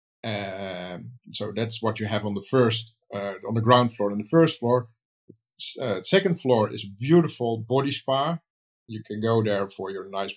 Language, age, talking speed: English, 50-69, 190 wpm